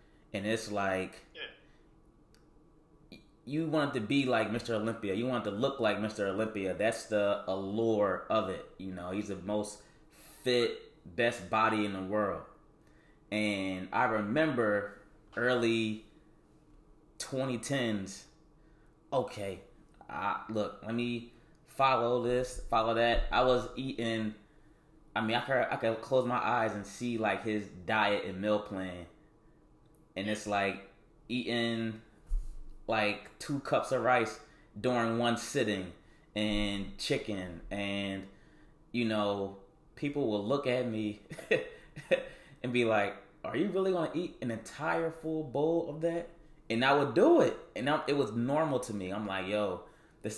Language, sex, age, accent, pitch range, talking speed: English, male, 20-39, American, 105-140 Hz, 145 wpm